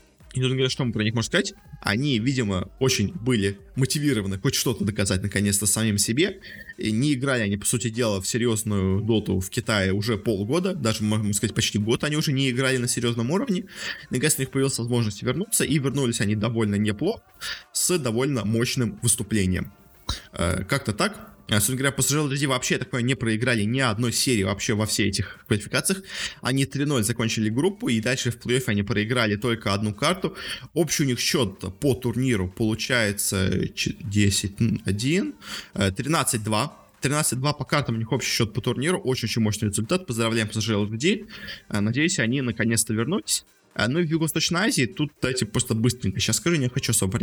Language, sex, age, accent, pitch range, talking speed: Russian, male, 20-39, native, 105-135 Hz, 165 wpm